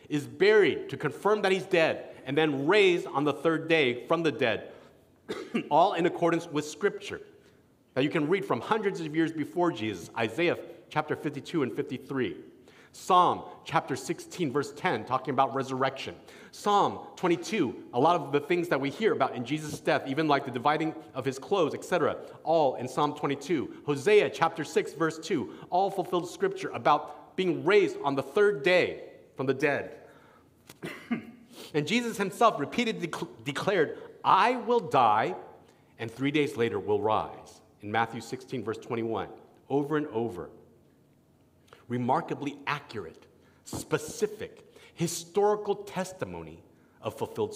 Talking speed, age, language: 150 wpm, 40-59, English